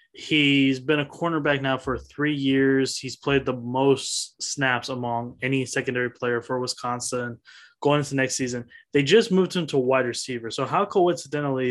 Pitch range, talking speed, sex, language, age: 125-145 Hz, 175 wpm, male, English, 20-39